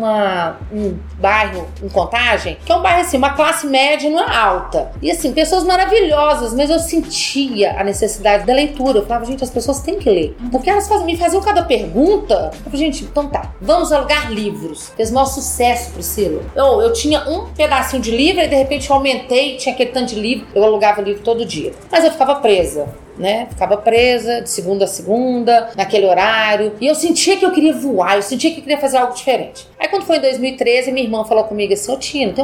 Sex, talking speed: female, 225 wpm